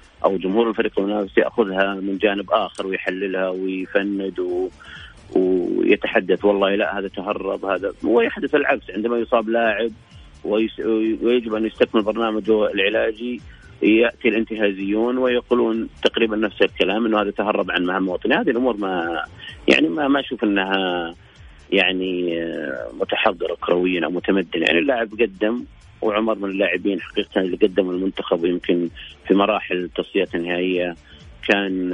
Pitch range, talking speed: 90-110 Hz, 130 wpm